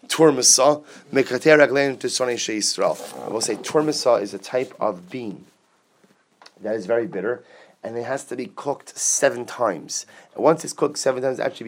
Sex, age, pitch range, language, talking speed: male, 30-49, 125-165 Hz, English, 150 wpm